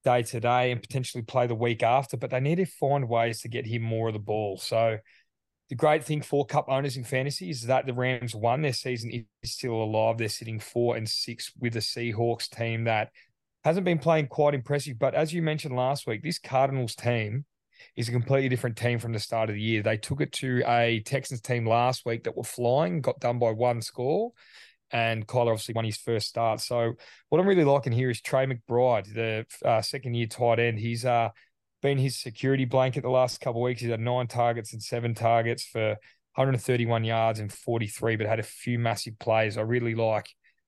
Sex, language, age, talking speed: male, English, 20-39, 215 wpm